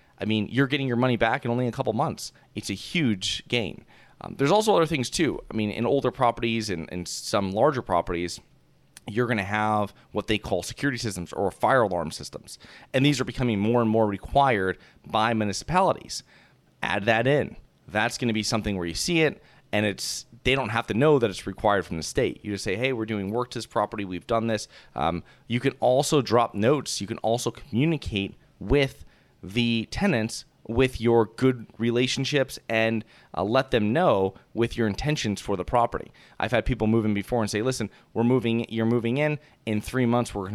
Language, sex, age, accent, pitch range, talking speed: English, male, 30-49, American, 100-125 Hz, 205 wpm